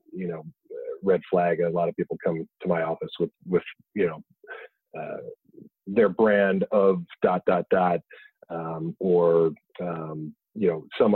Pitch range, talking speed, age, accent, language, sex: 90-105 Hz, 160 wpm, 30-49, American, English, male